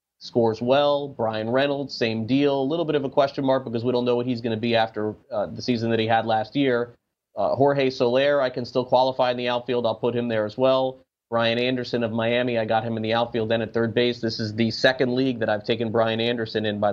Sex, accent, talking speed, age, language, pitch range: male, American, 260 wpm, 30-49, English, 110-130 Hz